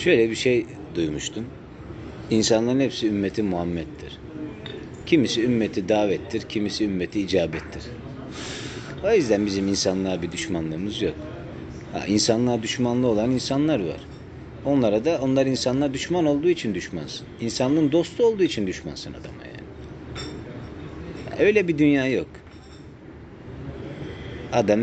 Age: 40-59